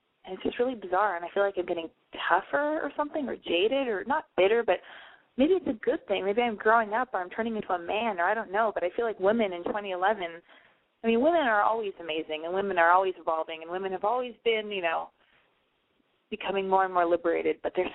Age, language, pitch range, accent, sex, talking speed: 20-39, English, 185-260 Hz, American, female, 235 wpm